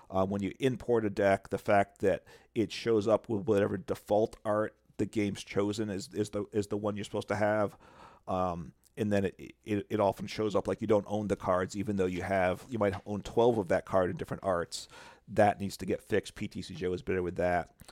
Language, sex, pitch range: English, male, 95-110 Hz